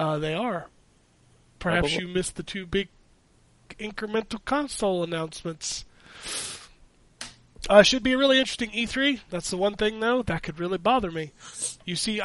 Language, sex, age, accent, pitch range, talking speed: English, male, 20-39, American, 170-215 Hz, 150 wpm